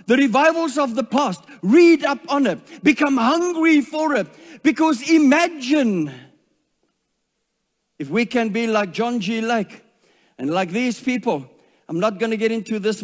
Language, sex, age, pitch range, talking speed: English, male, 50-69, 225-275 Hz, 155 wpm